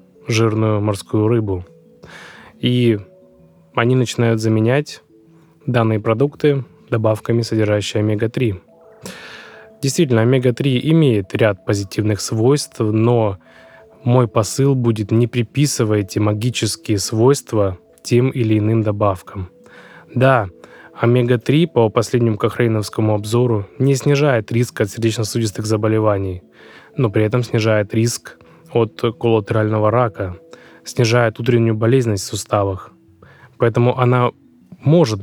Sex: male